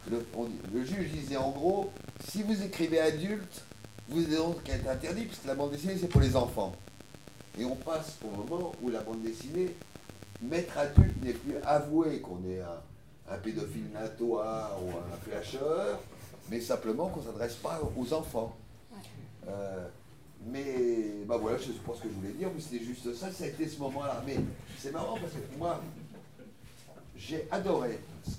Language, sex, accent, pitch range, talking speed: French, male, French, 110-145 Hz, 180 wpm